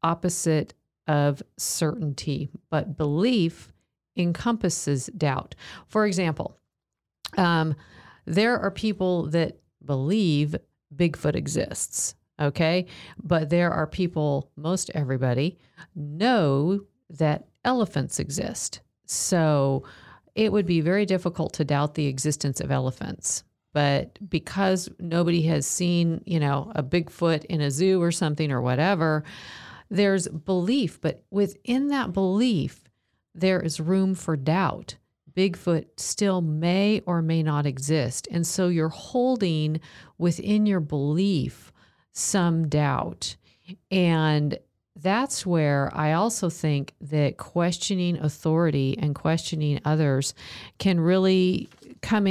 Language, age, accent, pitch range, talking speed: English, 50-69, American, 150-185 Hz, 110 wpm